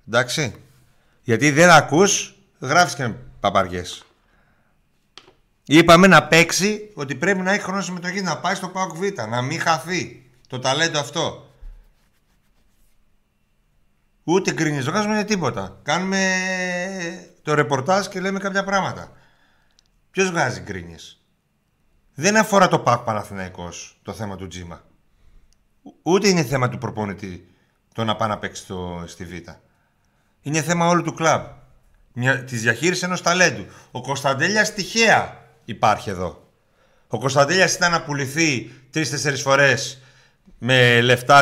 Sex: male